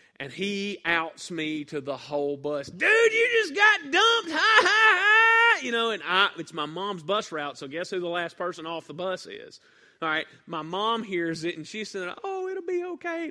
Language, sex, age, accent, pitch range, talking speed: English, male, 30-49, American, 140-190 Hz, 210 wpm